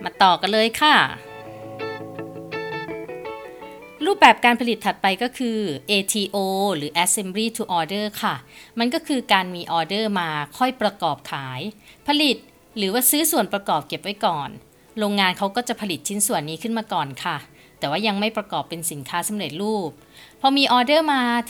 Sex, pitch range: female, 170-240 Hz